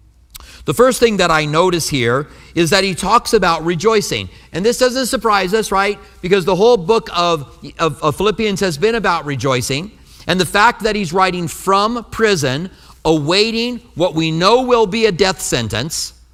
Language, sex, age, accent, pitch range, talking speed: English, male, 50-69, American, 155-220 Hz, 175 wpm